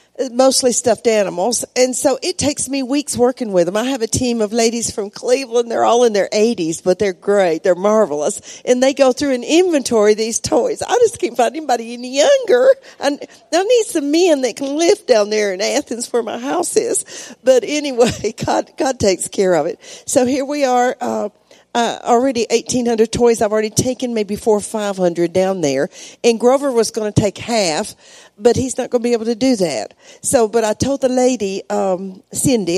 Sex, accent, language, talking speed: female, American, English, 205 wpm